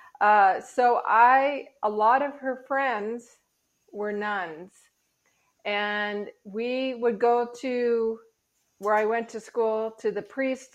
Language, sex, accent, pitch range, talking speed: English, female, American, 190-240 Hz, 130 wpm